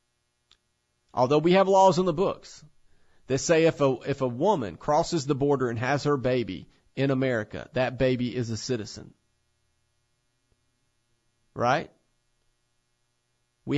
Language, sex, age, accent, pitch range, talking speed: English, male, 40-59, American, 115-150 Hz, 130 wpm